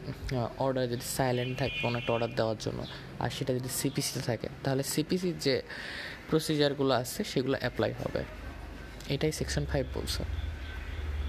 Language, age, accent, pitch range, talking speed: Bengali, 20-39, native, 125-155 Hz, 135 wpm